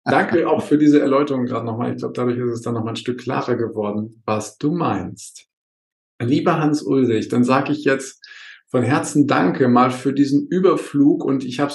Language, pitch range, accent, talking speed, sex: German, 125-150 Hz, German, 195 wpm, male